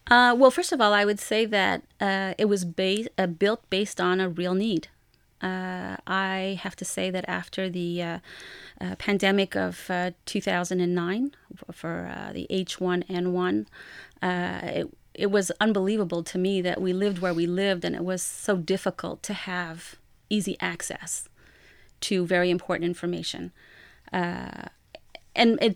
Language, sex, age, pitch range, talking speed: English, female, 30-49, 180-205 Hz, 155 wpm